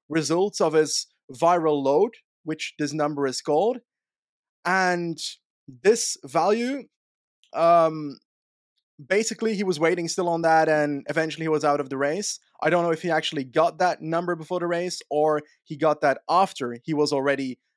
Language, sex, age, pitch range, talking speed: English, male, 20-39, 150-190 Hz, 165 wpm